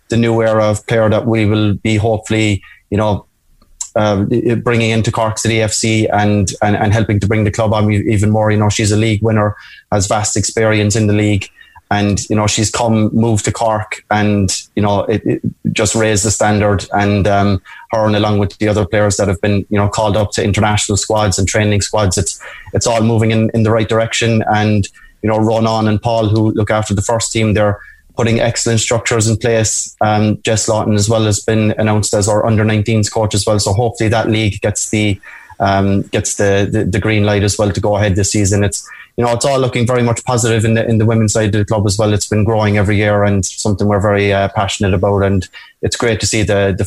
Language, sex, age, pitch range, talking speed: English, male, 20-39, 100-110 Hz, 230 wpm